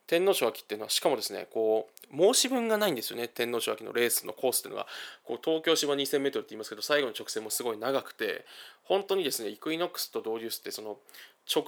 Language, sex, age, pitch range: Japanese, male, 20-39, 115-190 Hz